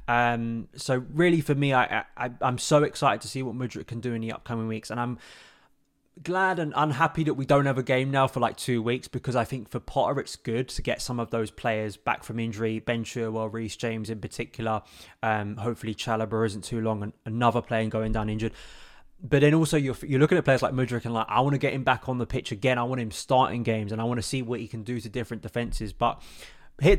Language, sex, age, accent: English, male, 20-39, British